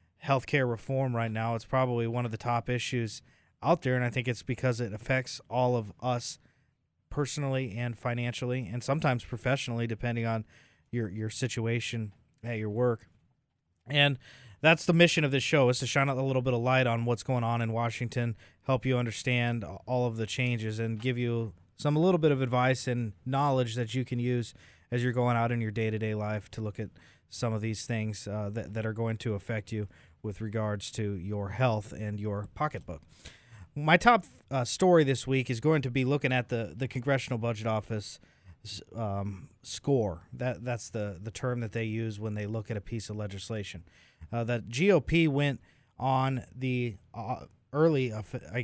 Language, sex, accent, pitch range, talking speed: English, male, American, 110-130 Hz, 190 wpm